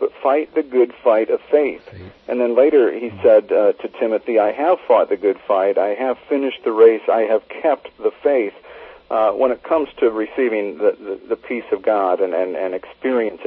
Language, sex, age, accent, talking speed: English, male, 50-69, American, 210 wpm